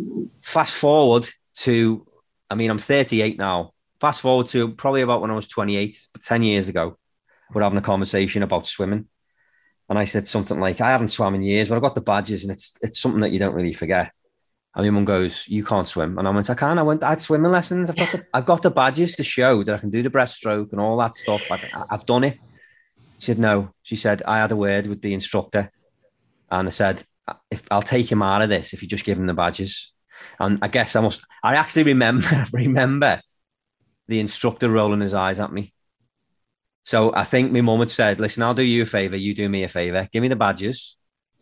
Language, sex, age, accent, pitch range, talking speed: English, male, 30-49, British, 100-135 Hz, 230 wpm